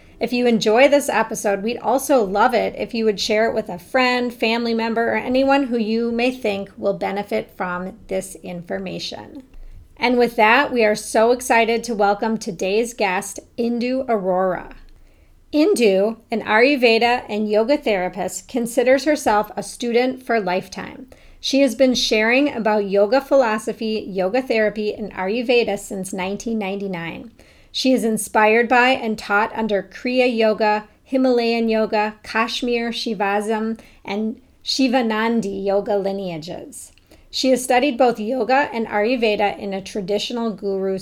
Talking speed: 140 wpm